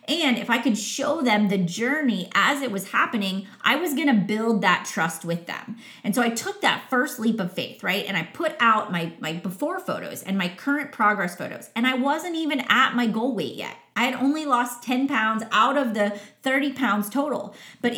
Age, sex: 30-49, female